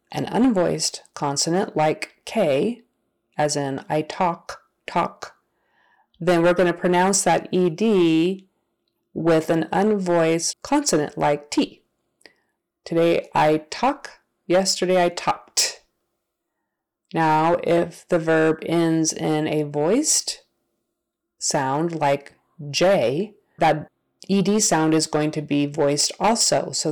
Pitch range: 155-185 Hz